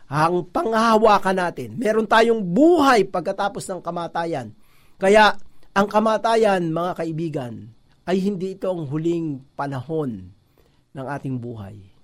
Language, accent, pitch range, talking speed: Filipino, native, 140-195 Hz, 110 wpm